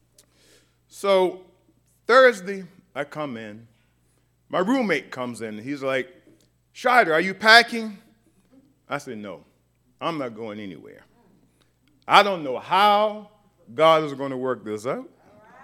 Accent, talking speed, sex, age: American, 130 wpm, male, 40-59